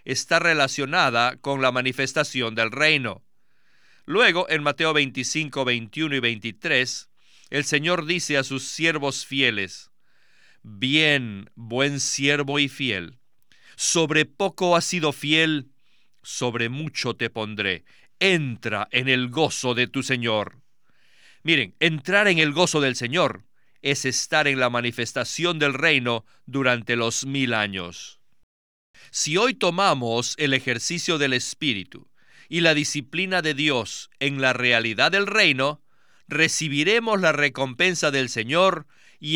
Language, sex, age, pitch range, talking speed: Spanish, male, 50-69, 125-160 Hz, 125 wpm